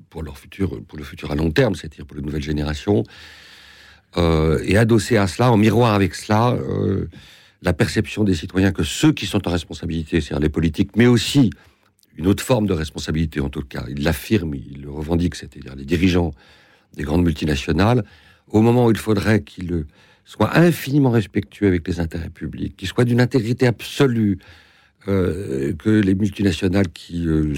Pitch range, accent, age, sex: 80-105 Hz, French, 60-79, male